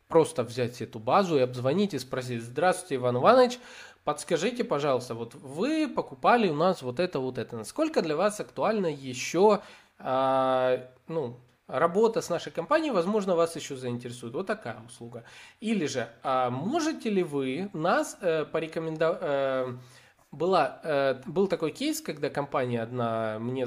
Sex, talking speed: male, 140 wpm